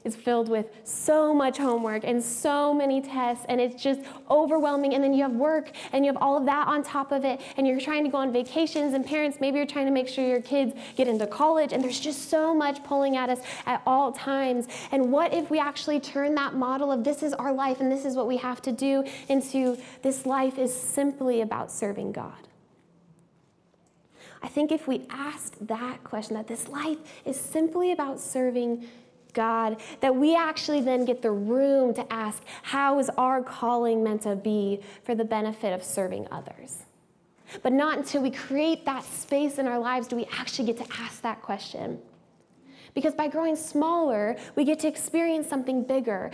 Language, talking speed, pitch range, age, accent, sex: English, 200 wpm, 240-285 Hz, 10-29, American, female